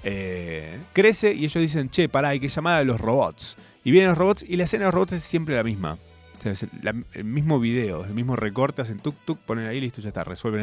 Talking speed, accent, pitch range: 255 wpm, Argentinian, 95-150 Hz